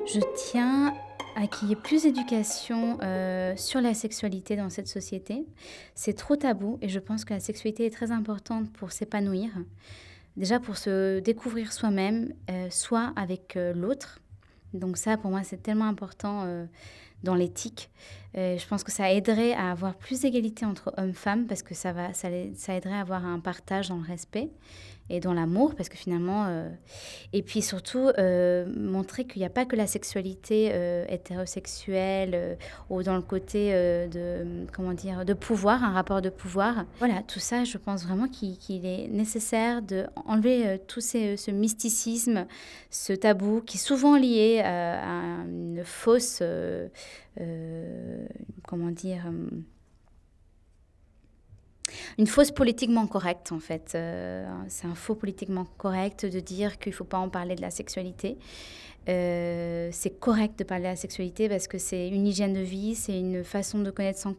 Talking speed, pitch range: 175 wpm, 180-215 Hz